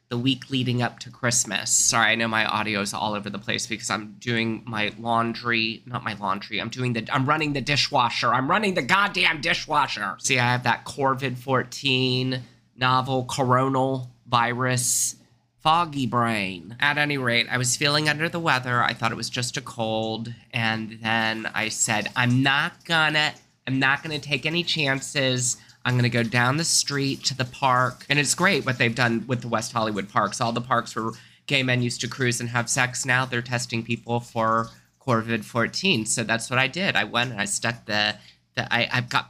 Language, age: English, 20-39